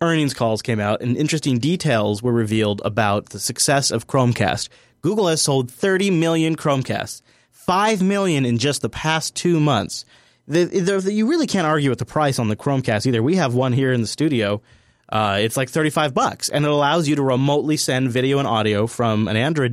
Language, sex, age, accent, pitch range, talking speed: English, male, 30-49, American, 115-155 Hz, 205 wpm